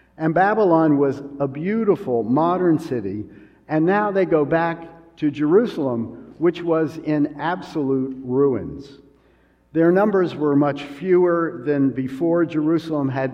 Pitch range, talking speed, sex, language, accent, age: 115-150 Hz, 125 wpm, male, English, American, 50-69